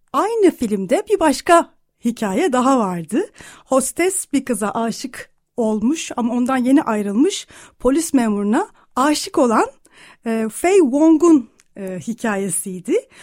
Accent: native